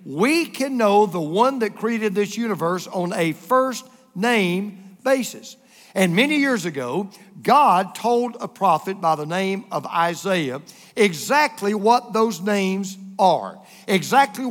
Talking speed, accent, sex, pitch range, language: 135 wpm, American, male, 175-220 Hz, English